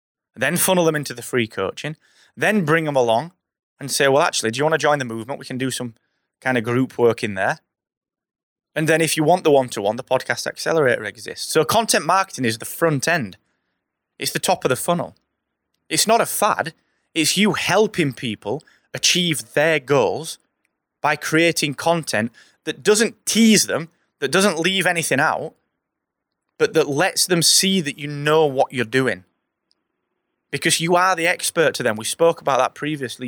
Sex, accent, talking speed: male, British, 185 wpm